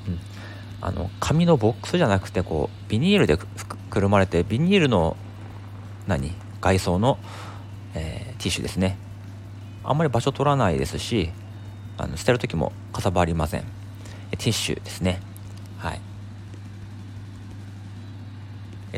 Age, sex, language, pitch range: 40-59, male, Japanese, 100-105 Hz